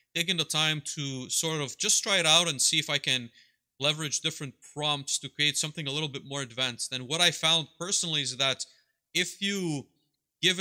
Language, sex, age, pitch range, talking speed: English, male, 30-49, 130-160 Hz, 205 wpm